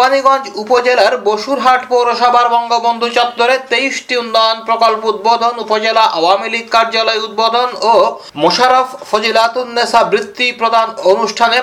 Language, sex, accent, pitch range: Bengali, male, native, 205-235 Hz